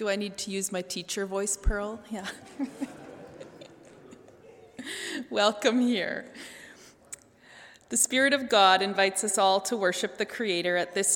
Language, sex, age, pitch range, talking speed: English, female, 30-49, 180-225 Hz, 135 wpm